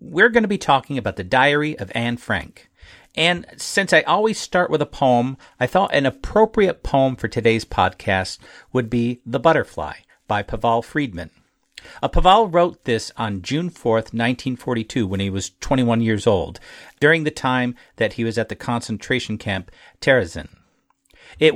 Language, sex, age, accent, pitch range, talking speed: English, male, 50-69, American, 110-145 Hz, 165 wpm